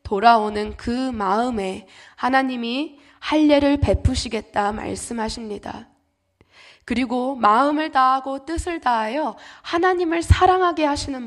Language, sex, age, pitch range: Korean, female, 20-39, 220-290 Hz